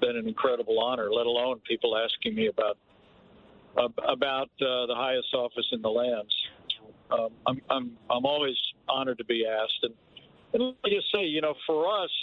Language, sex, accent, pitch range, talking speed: English, male, American, 130-160 Hz, 185 wpm